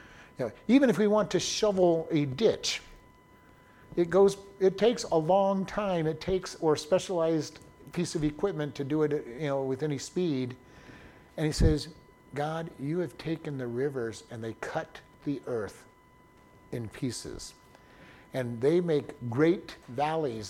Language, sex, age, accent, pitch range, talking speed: English, male, 50-69, American, 140-180 Hz, 150 wpm